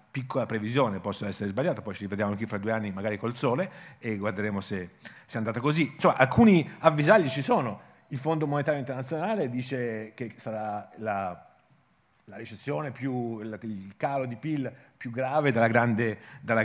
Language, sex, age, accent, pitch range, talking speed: Italian, male, 40-59, native, 115-150 Hz, 170 wpm